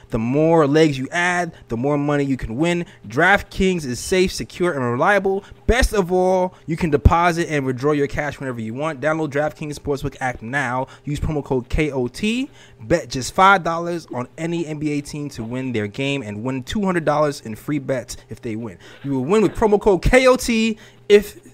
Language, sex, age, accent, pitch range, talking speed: English, male, 20-39, American, 130-175 Hz, 185 wpm